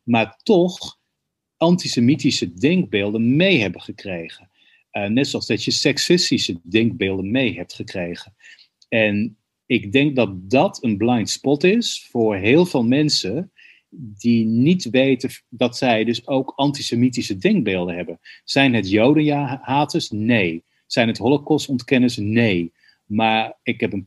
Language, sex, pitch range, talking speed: Dutch, male, 110-145 Hz, 130 wpm